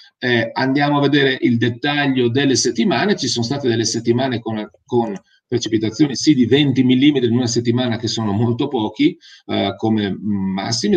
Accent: native